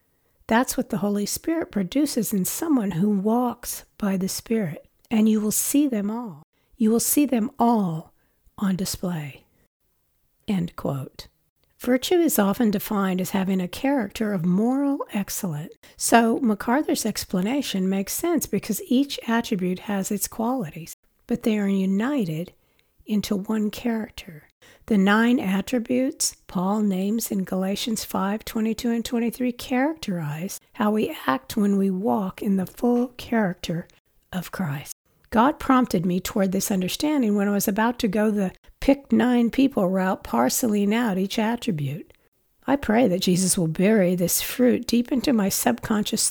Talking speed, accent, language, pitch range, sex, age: 140 wpm, American, English, 190-240 Hz, female, 60-79